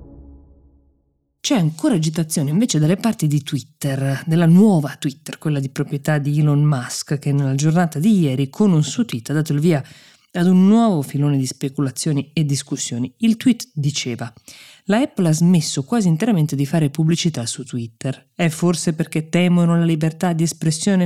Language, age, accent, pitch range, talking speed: Italian, 20-39, native, 135-170 Hz, 170 wpm